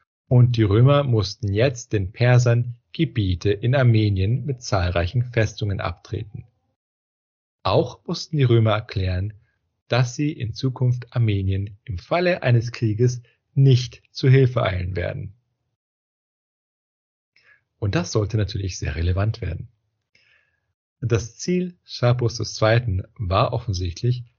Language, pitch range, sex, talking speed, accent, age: German, 100-125 Hz, male, 115 wpm, German, 40-59